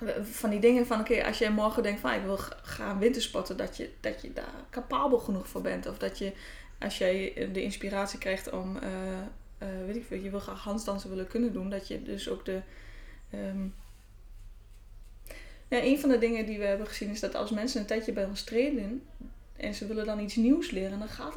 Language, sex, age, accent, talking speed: Dutch, female, 20-39, Dutch, 220 wpm